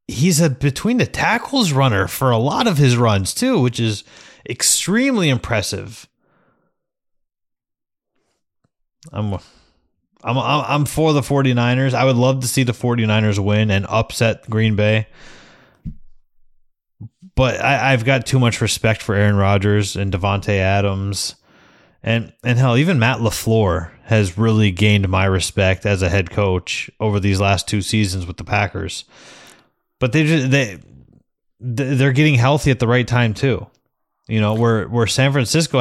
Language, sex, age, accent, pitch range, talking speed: English, male, 20-39, American, 100-130 Hz, 150 wpm